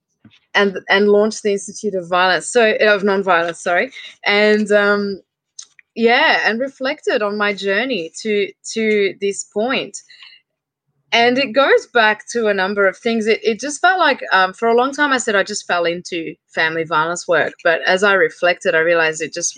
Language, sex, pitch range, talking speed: English, female, 175-245 Hz, 180 wpm